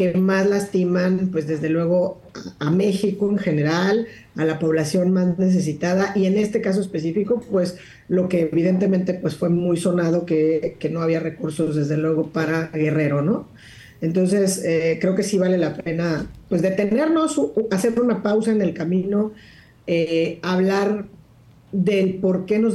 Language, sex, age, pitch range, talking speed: Spanish, female, 40-59, 165-200 Hz, 160 wpm